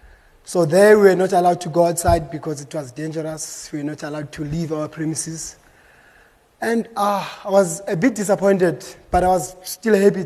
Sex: male